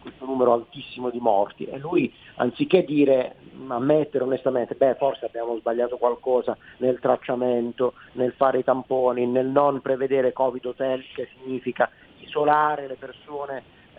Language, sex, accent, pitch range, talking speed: Italian, male, native, 125-160 Hz, 135 wpm